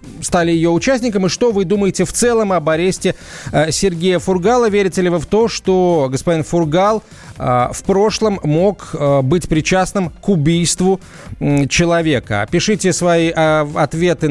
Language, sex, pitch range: Russian, male, 150-185 Hz